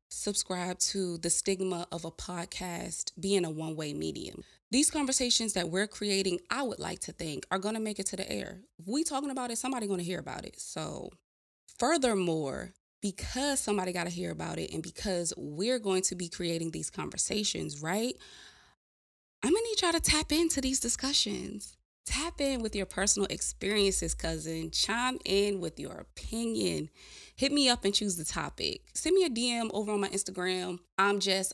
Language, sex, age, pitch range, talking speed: English, female, 20-39, 180-235 Hz, 185 wpm